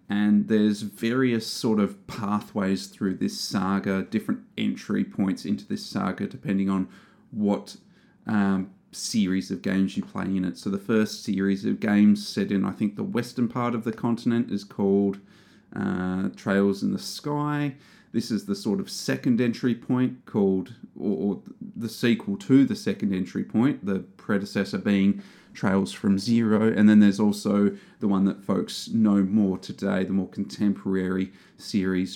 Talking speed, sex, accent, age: 165 wpm, male, Australian, 30-49